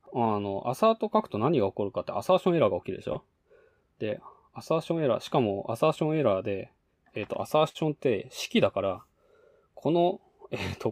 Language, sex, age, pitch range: Japanese, male, 20-39, 100-155 Hz